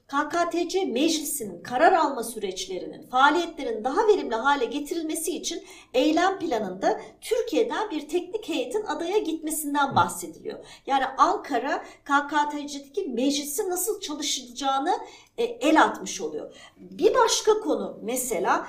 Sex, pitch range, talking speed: female, 270-365 Hz, 105 wpm